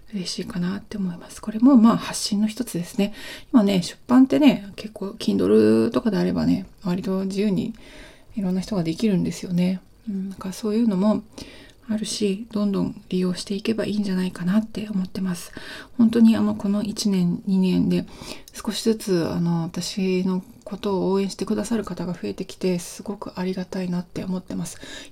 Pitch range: 185-220 Hz